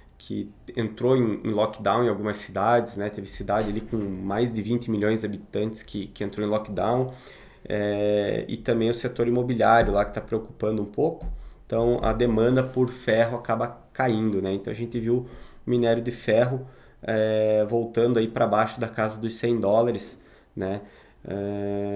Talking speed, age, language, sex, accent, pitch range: 170 wpm, 20-39, Portuguese, male, Brazilian, 105-120 Hz